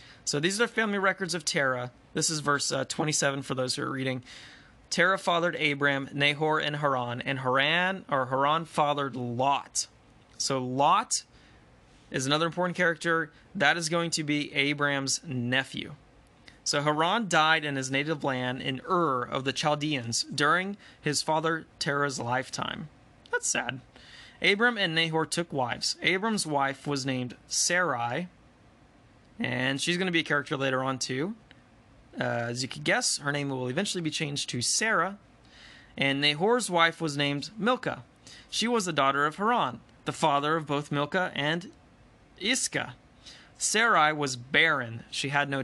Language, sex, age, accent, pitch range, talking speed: English, male, 20-39, American, 130-170 Hz, 155 wpm